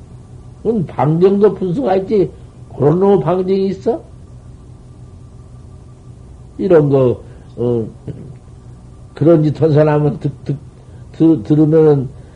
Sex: male